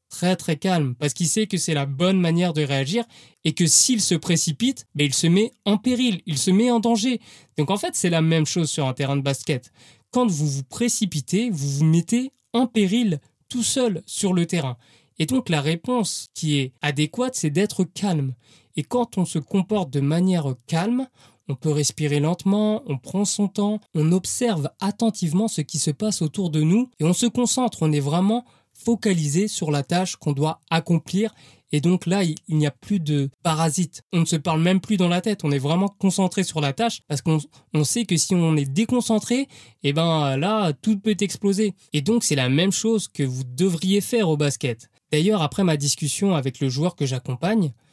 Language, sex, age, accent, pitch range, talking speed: French, male, 20-39, French, 150-205 Hz, 210 wpm